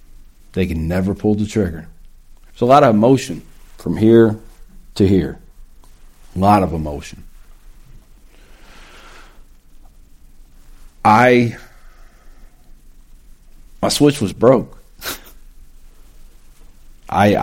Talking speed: 85 wpm